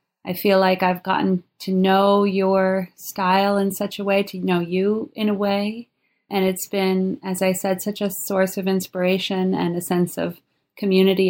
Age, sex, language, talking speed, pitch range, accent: 30-49, female, English, 185 wpm, 175-195 Hz, American